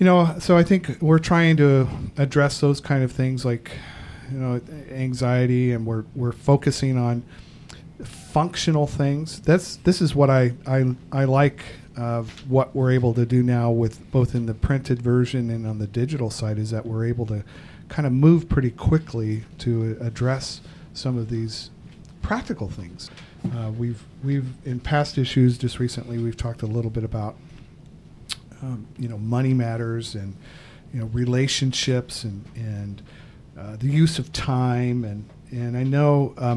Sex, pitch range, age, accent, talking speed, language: male, 115-140 Hz, 50-69, American, 165 wpm, English